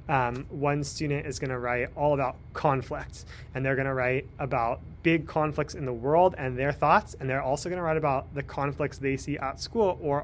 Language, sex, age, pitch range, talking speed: English, male, 30-49, 125-160 Hz, 225 wpm